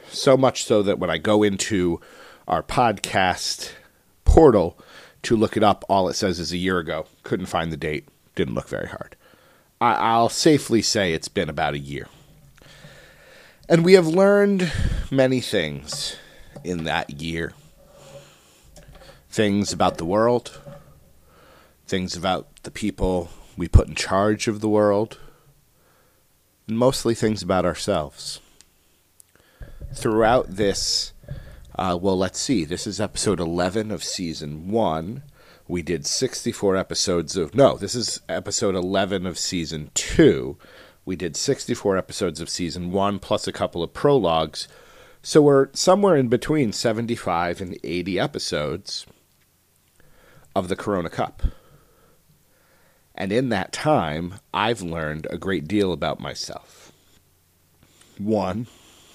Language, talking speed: English, 135 wpm